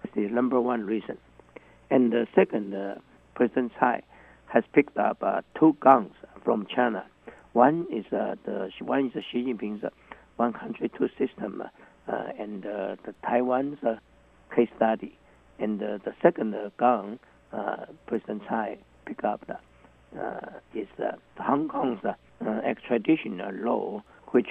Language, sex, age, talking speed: English, male, 60-79, 140 wpm